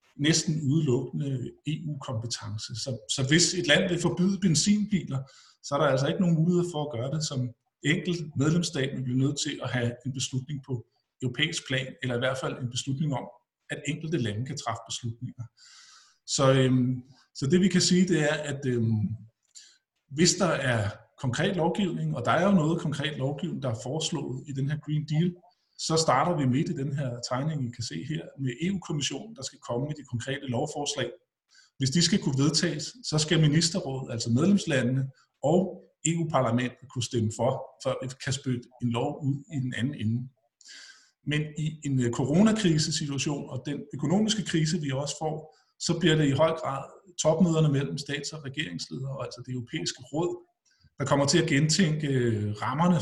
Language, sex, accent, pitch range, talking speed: Danish, male, native, 125-160 Hz, 180 wpm